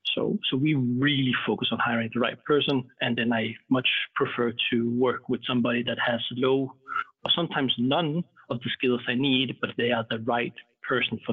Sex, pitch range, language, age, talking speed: male, 120-145 Hz, English, 30-49, 195 wpm